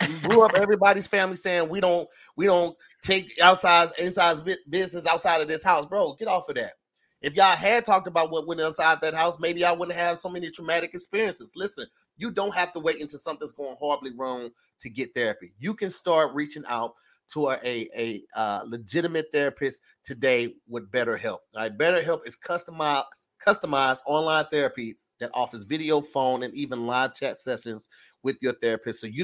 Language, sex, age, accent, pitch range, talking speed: English, male, 30-49, American, 130-180 Hz, 185 wpm